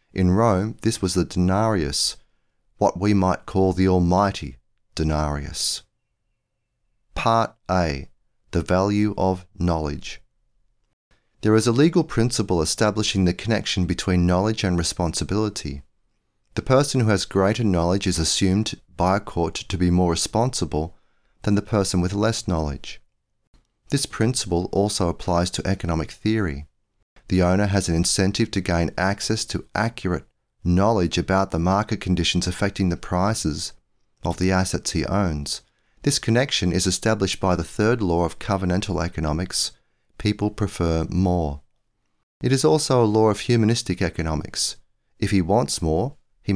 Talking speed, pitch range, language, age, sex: 140 wpm, 85-110 Hz, English, 30-49, male